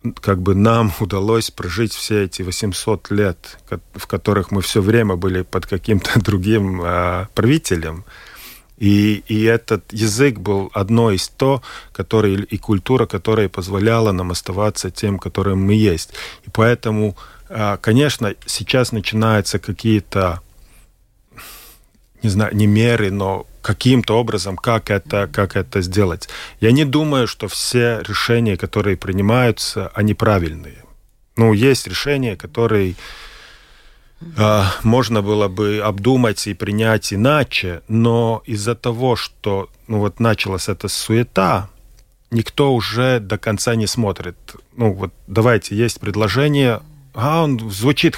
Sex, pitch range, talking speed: male, 100-115 Hz, 125 wpm